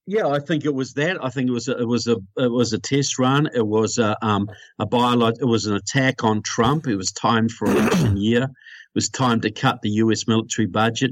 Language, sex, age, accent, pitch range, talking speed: English, male, 50-69, Australian, 110-130 Hz, 250 wpm